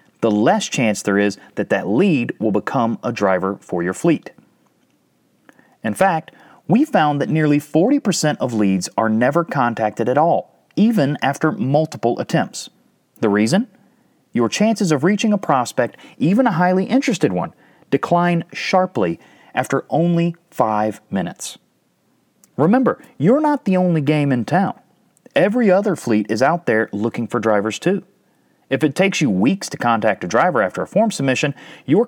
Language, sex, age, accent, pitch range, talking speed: English, male, 30-49, American, 120-190 Hz, 155 wpm